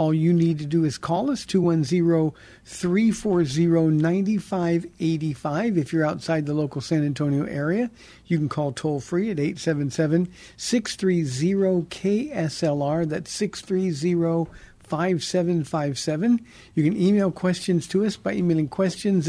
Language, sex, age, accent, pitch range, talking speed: English, male, 50-69, American, 150-180 Hz, 105 wpm